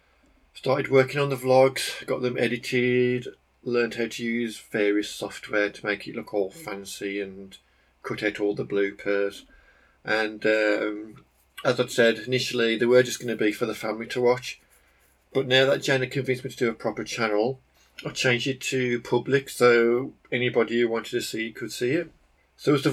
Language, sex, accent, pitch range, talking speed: English, male, British, 105-130 Hz, 185 wpm